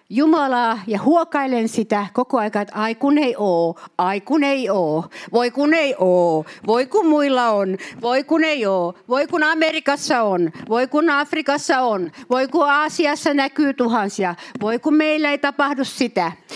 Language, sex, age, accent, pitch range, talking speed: Finnish, female, 60-79, native, 210-295 Hz, 160 wpm